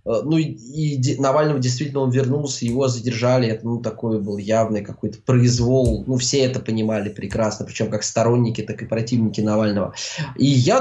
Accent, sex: native, male